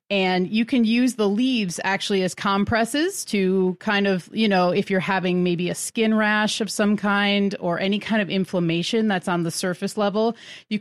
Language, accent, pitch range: English, American, 185-230 Hz